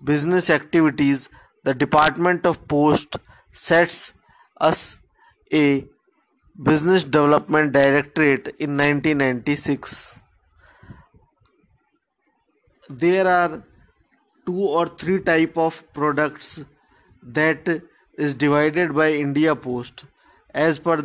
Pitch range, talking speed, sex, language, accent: 145-170 Hz, 85 wpm, male, Hindi, native